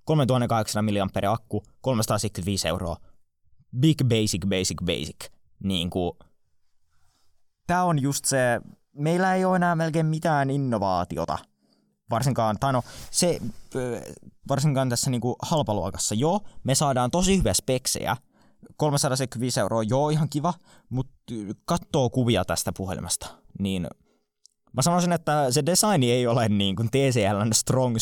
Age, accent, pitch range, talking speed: 20-39, native, 100-135 Hz, 120 wpm